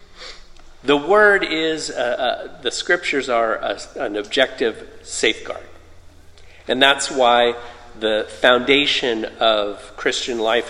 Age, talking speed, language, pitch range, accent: 50-69, 105 wpm, English, 105-140 Hz, American